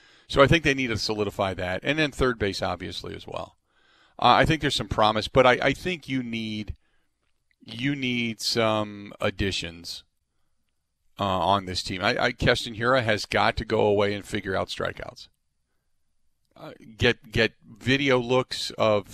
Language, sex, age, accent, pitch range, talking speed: English, male, 40-59, American, 100-130 Hz, 165 wpm